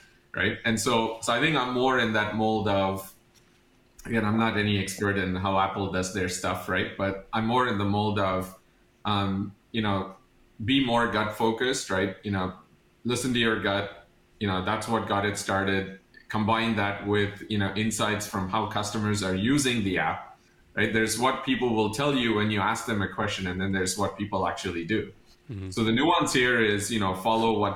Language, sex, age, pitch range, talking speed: English, male, 30-49, 95-110 Hz, 205 wpm